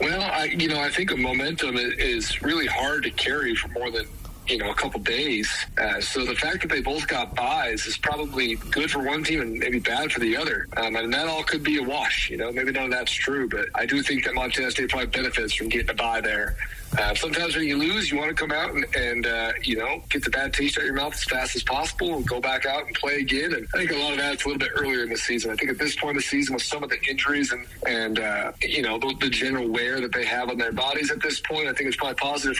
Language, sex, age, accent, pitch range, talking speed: English, male, 40-59, American, 125-150 Hz, 285 wpm